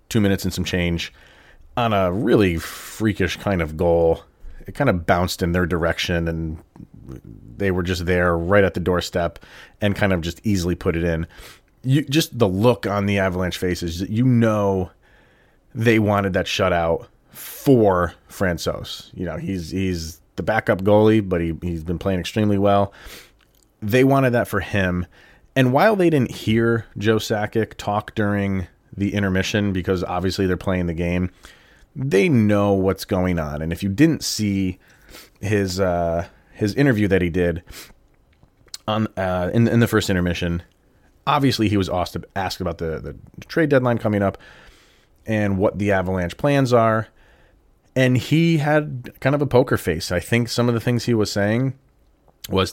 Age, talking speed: 30-49, 170 wpm